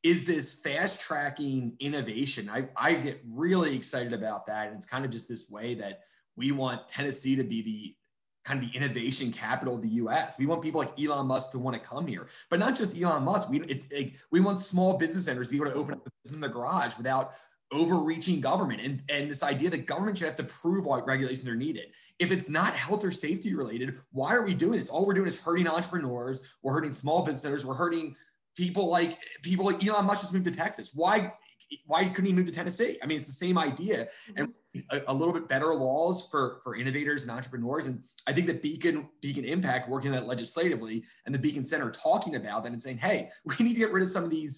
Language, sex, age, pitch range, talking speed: English, male, 30-49, 130-175 Hz, 235 wpm